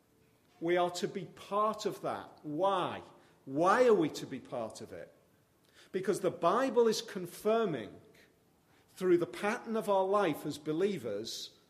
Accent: British